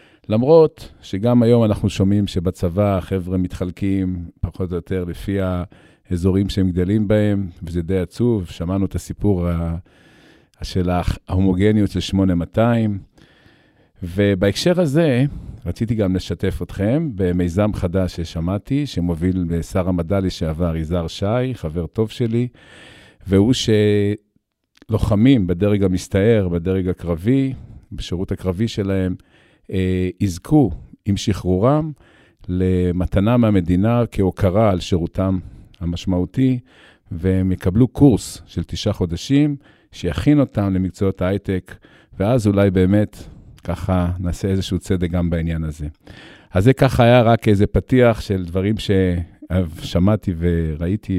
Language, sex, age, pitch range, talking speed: Hebrew, male, 50-69, 90-110 Hz, 110 wpm